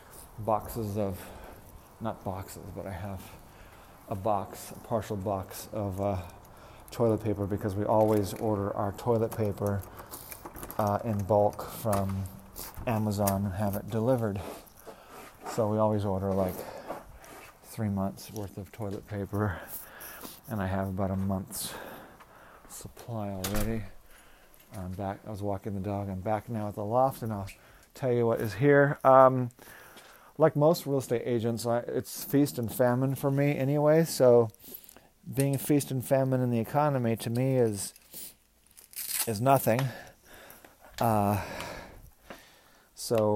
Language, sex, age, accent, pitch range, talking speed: English, male, 40-59, American, 100-120 Hz, 135 wpm